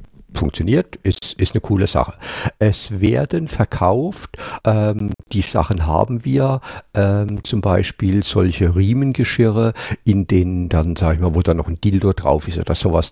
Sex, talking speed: male, 155 wpm